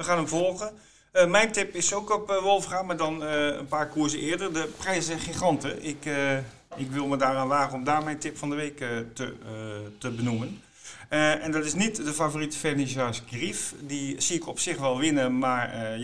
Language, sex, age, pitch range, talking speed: Dutch, male, 50-69, 125-155 Hz, 220 wpm